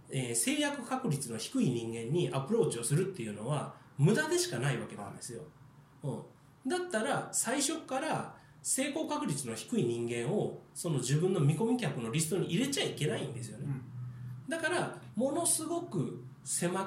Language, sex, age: Japanese, male, 20-39